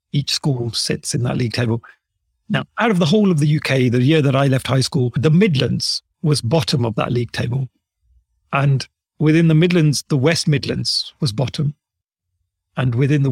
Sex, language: male, English